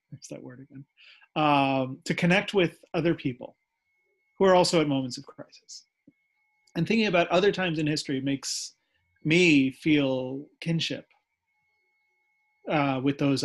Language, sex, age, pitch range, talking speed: English, male, 30-49, 140-190 Hz, 135 wpm